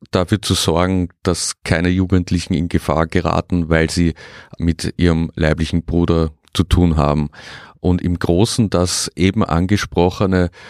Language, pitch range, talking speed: German, 85-95 Hz, 135 wpm